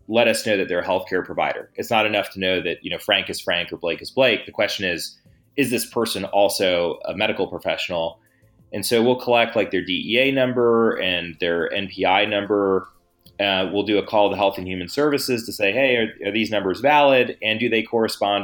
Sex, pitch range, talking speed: male, 90-110 Hz, 220 wpm